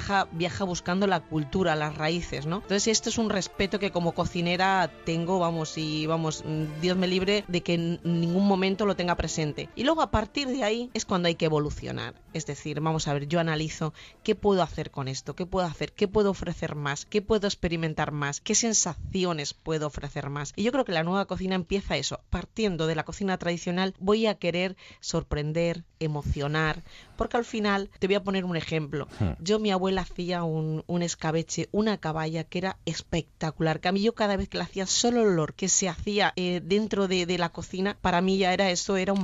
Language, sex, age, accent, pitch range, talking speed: Spanish, female, 30-49, Spanish, 160-195 Hz, 210 wpm